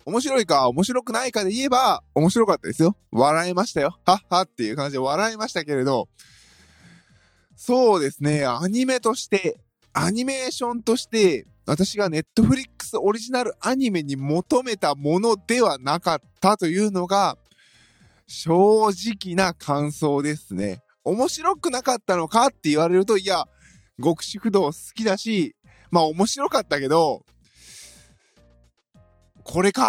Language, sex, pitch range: Japanese, male, 150-220 Hz